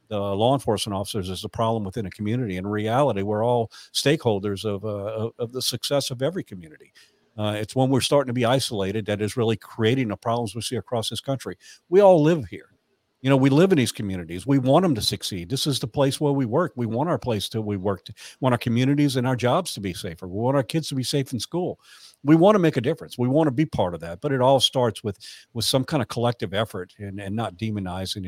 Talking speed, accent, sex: 250 wpm, American, male